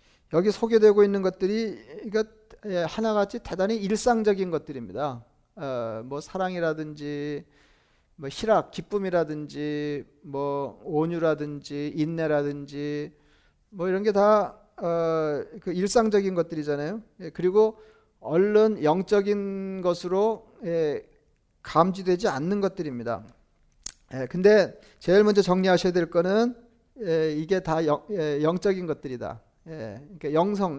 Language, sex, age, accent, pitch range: Korean, male, 40-59, native, 150-205 Hz